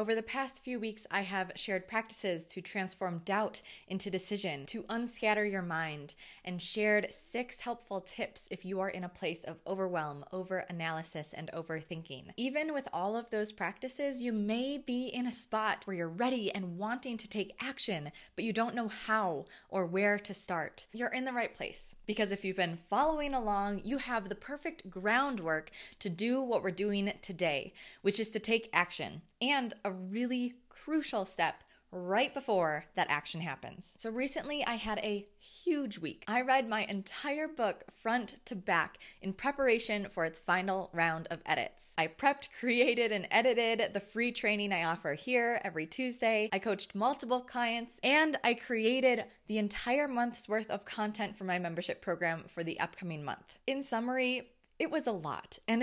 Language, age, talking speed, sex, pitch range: English, 20-39, 175 wpm, female, 185-240 Hz